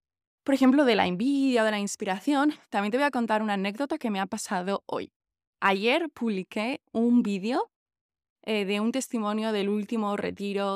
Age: 20-39